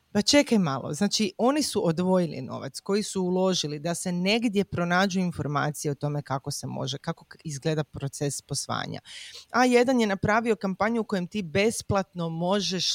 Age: 30-49